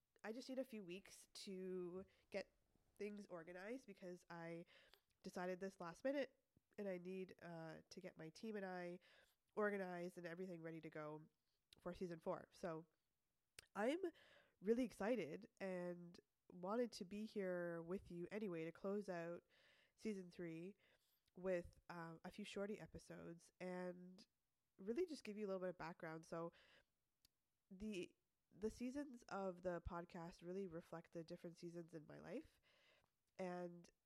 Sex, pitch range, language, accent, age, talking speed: female, 170-210 Hz, English, American, 20-39, 150 wpm